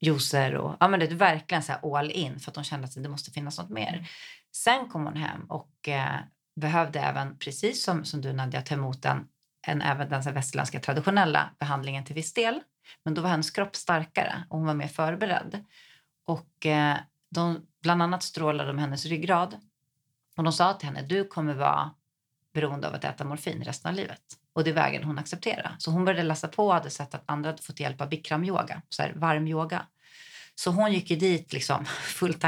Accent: native